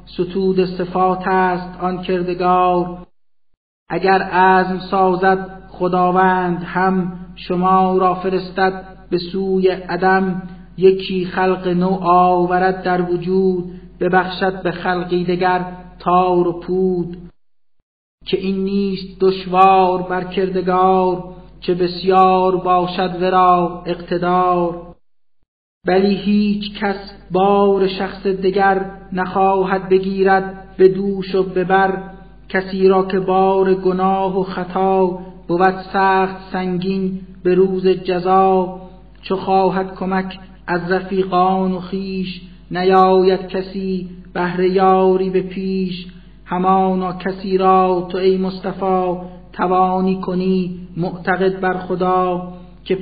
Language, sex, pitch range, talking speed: Persian, male, 180-190 Hz, 100 wpm